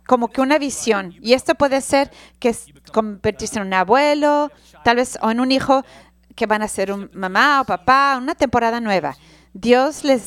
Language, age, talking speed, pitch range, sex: English, 40-59, 185 wpm, 220-275 Hz, female